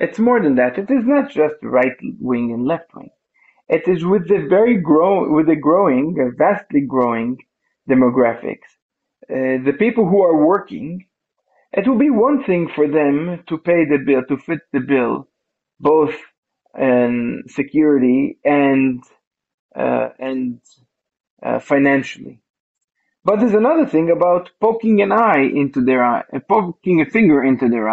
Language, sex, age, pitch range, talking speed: English, male, 40-59, 140-215 Hz, 155 wpm